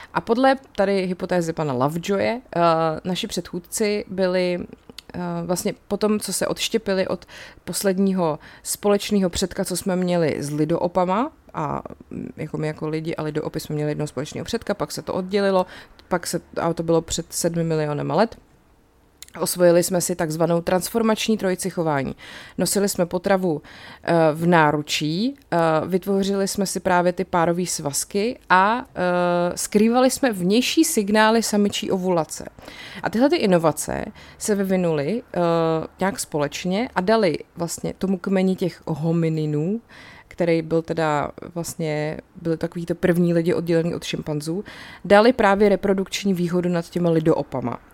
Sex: female